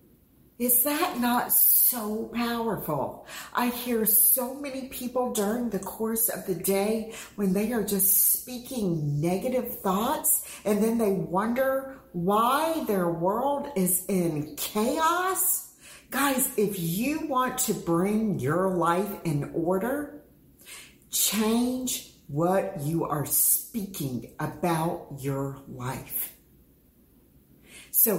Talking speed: 110 wpm